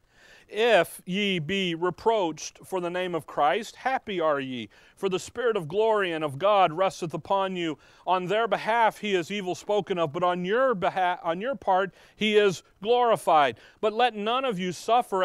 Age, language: 40-59, English